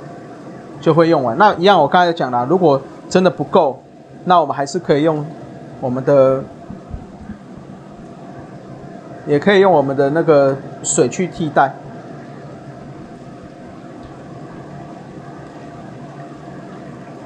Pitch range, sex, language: 135-170 Hz, male, Chinese